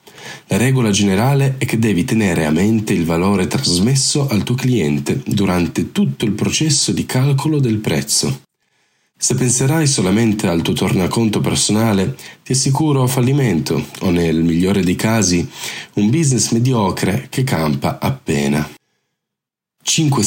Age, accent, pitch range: 40-59, native, 90-130 Hz